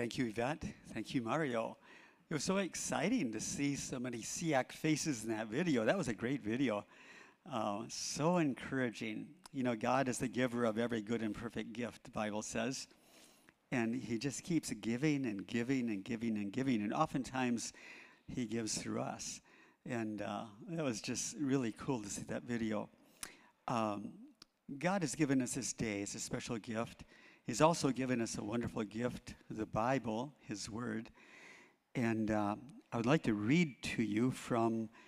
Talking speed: 175 wpm